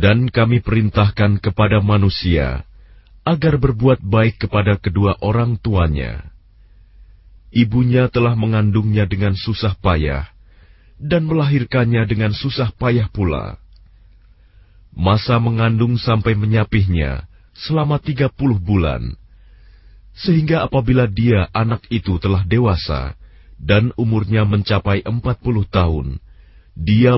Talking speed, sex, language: 100 wpm, male, Indonesian